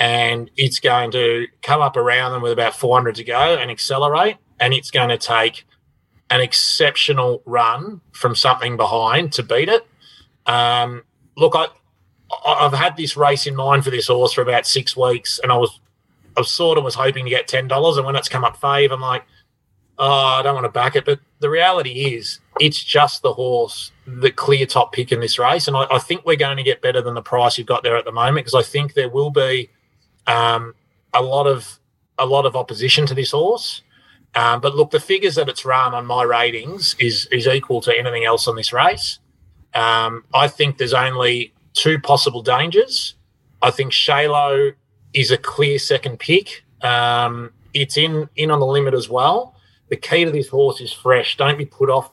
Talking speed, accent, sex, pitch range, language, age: 205 wpm, Australian, male, 120-145 Hz, English, 30-49